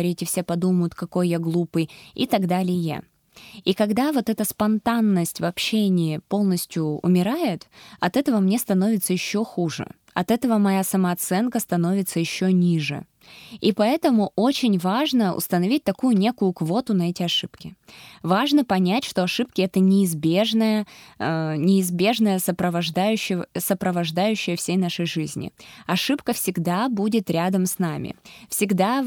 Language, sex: Russian, female